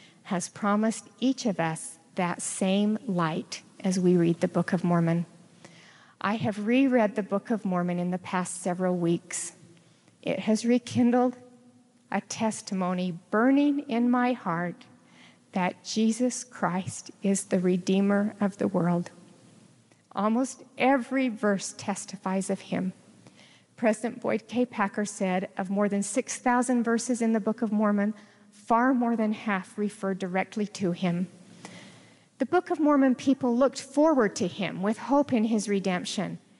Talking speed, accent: 145 wpm, American